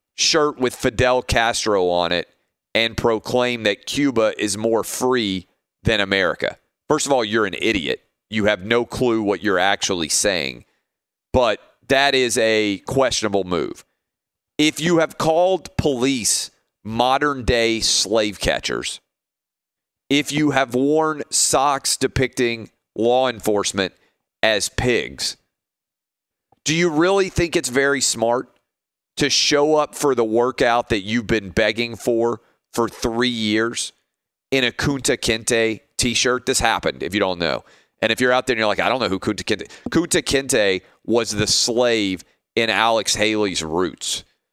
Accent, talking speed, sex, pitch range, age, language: American, 145 wpm, male, 105-130 Hz, 40-59, English